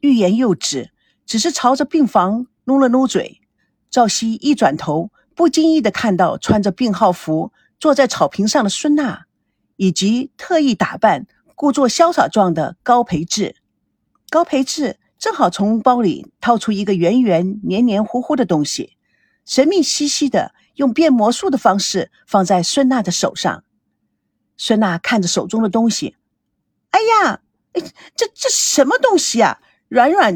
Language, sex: Chinese, female